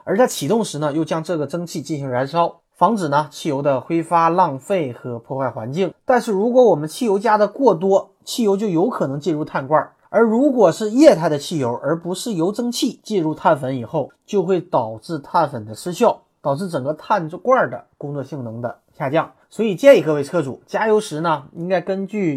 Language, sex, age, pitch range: Chinese, male, 20-39, 150-215 Hz